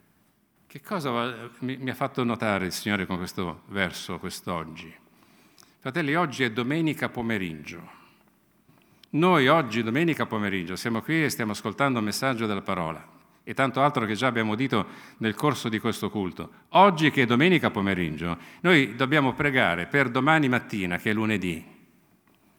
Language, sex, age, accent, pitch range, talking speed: Italian, male, 50-69, native, 110-140 Hz, 150 wpm